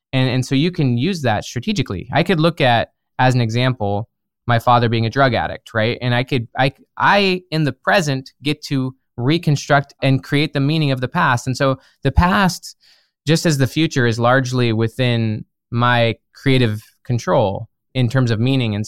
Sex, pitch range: male, 110-135 Hz